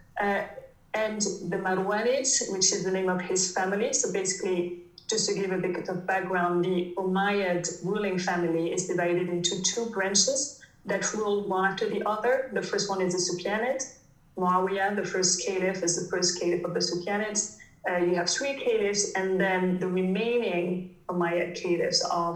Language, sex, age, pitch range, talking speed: English, female, 30-49, 175-205 Hz, 170 wpm